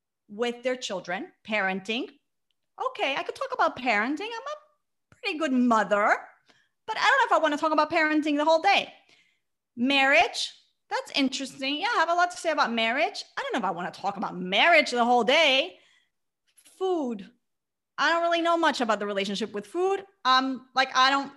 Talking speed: 195 wpm